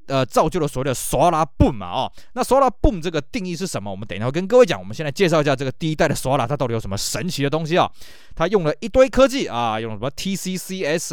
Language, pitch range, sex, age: Chinese, 130-185 Hz, male, 20-39